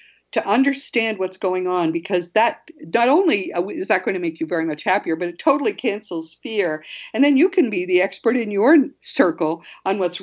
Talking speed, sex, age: 205 wpm, female, 50-69